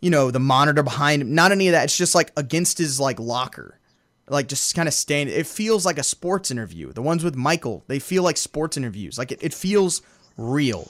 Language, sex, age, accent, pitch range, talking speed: English, male, 20-39, American, 130-185 Hz, 230 wpm